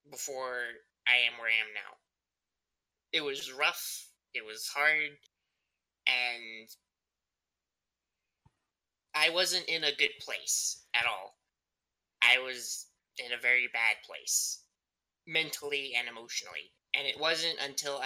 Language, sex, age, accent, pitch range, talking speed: English, male, 20-39, American, 115-145 Hz, 120 wpm